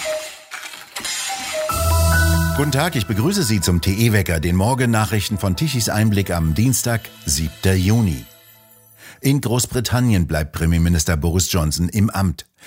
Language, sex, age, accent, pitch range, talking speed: German, male, 60-79, German, 85-110 Hz, 115 wpm